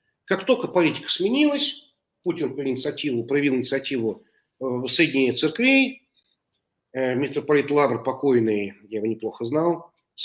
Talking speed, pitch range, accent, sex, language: 105 wpm, 130-180 Hz, native, male, Russian